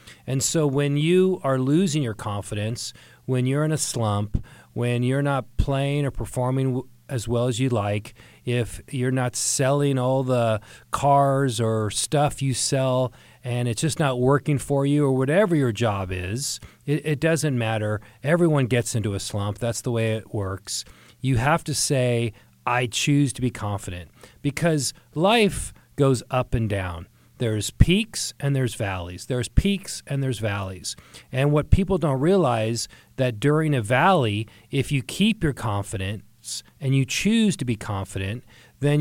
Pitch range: 115-145 Hz